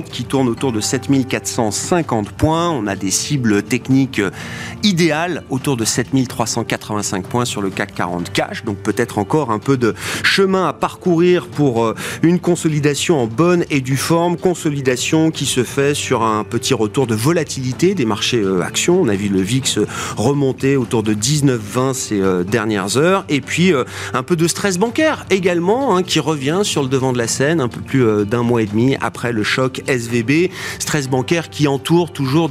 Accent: French